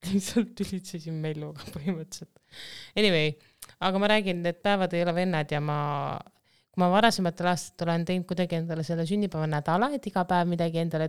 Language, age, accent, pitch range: English, 20-39, Finnish, 160-185 Hz